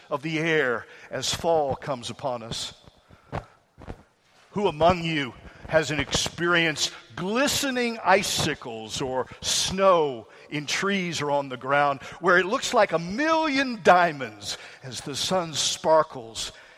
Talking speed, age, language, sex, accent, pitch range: 125 wpm, 50-69, English, male, American, 140-195 Hz